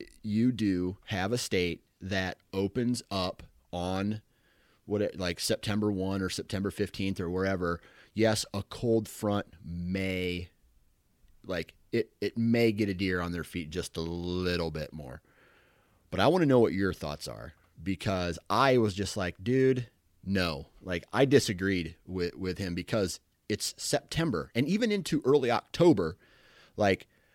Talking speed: 155 wpm